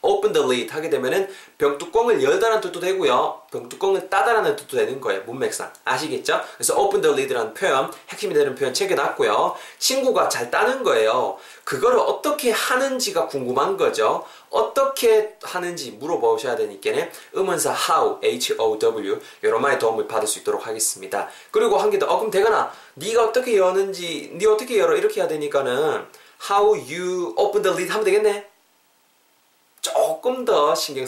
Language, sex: Korean, male